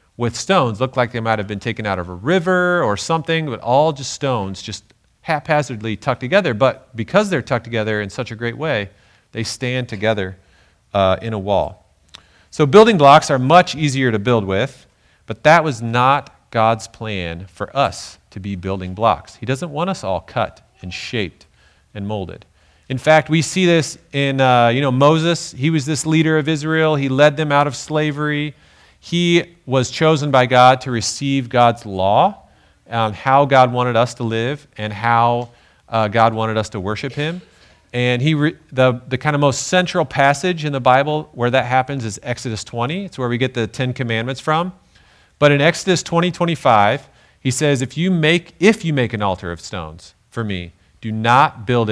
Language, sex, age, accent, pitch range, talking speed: English, male, 40-59, American, 105-150 Hz, 190 wpm